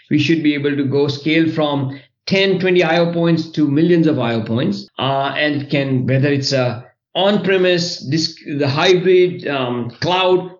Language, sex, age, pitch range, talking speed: English, male, 50-69, 130-160 Hz, 165 wpm